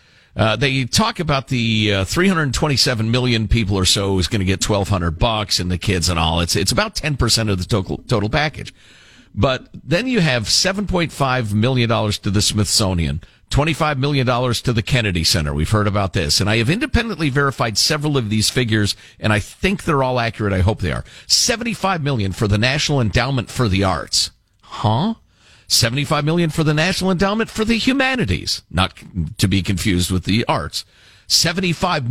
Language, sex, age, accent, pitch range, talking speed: English, male, 50-69, American, 100-155 Hz, 180 wpm